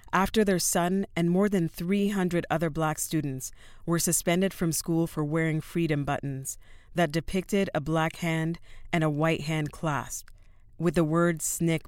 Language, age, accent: English, 40-59, American